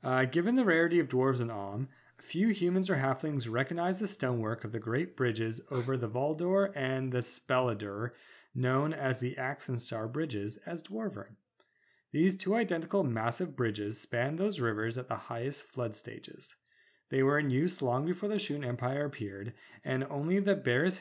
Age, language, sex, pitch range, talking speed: 30-49, English, male, 120-165 Hz, 170 wpm